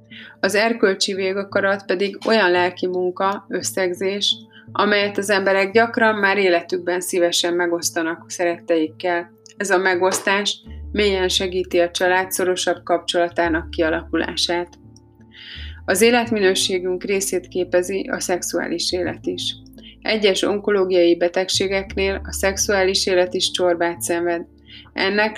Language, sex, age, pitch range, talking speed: Hungarian, female, 30-49, 170-195 Hz, 105 wpm